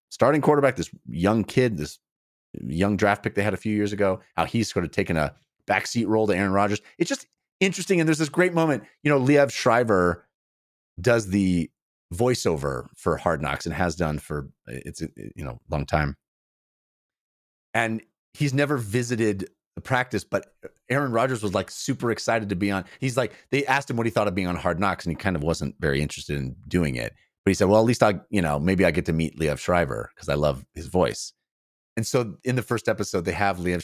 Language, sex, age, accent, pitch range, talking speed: English, male, 30-49, American, 85-120 Hz, 220 wpm